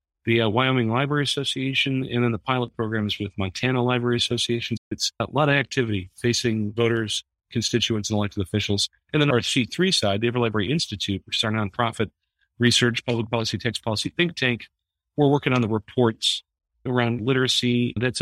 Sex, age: male, 40-59